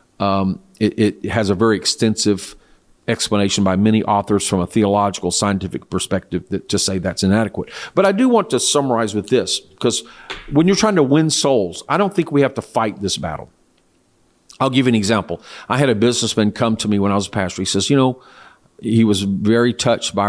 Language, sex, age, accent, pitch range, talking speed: English, male, 50-69, American, 100-140 Hz, 210 wpm